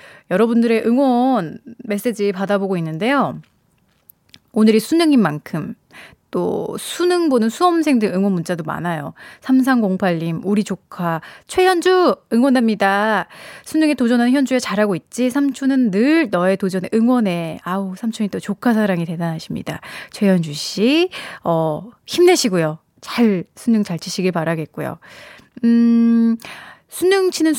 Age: 20-39